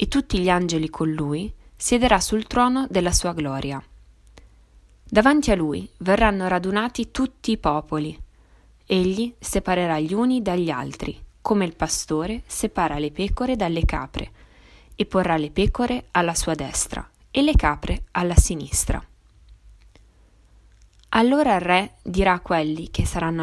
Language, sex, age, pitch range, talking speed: Italian, female, 20-39, 160-205 Hz, 140 wpm